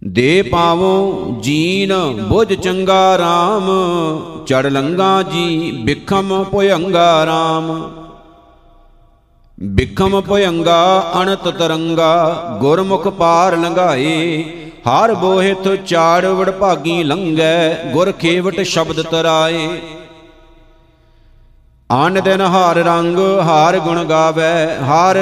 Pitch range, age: 160-185 Hz, 50-69